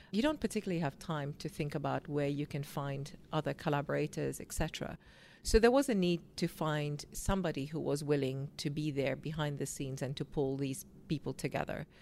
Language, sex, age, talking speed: English, female, 40-59, 190 wpm